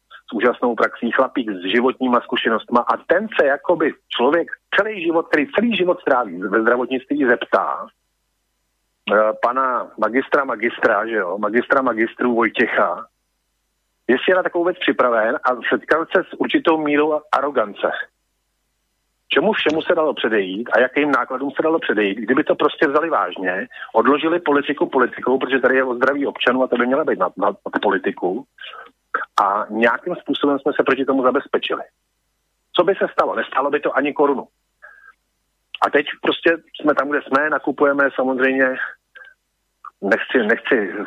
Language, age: Slovak, 50-69